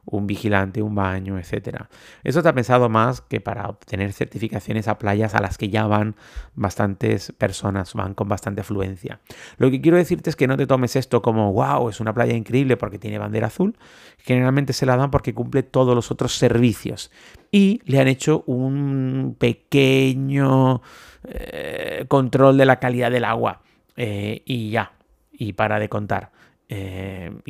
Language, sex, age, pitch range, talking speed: Spanish, male, 30-49, 105-130 Hz, 170 wpm